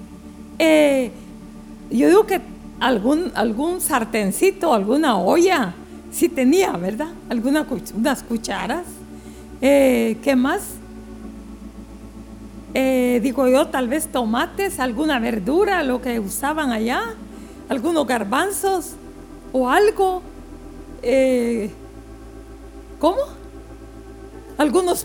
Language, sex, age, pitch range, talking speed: Spanish, female, 50-69, 210-325 Hz, 90 wpm